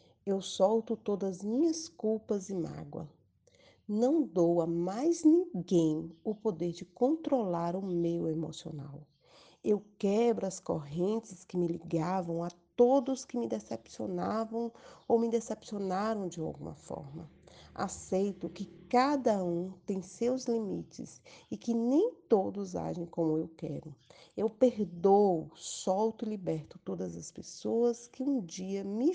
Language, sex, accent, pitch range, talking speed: Portuguese, female, Brazilian, 170-210 Hz, 135 wpm